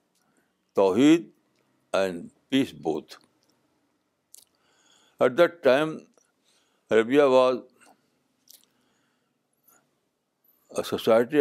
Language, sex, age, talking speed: Urdu, male, 60-79, 60 wpm